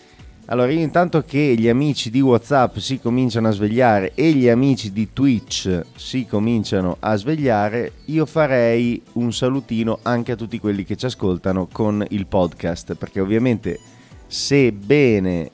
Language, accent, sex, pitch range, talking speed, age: Italian, native, male, 95-125 Hz, 145 wpm, 30-49